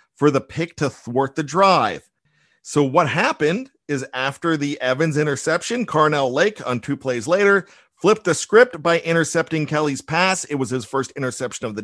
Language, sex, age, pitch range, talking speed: English, male, 50-69, 145-185 Hz, 175 wpm